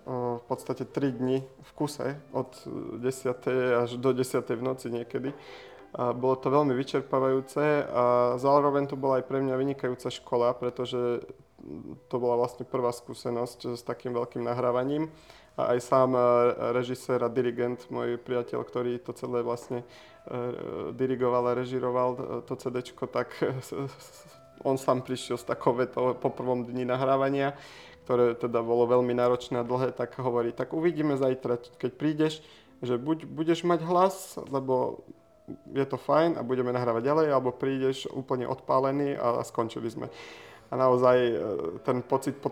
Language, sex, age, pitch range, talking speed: Slovak, male, 30-49, 120-135 Hz, 150 wpm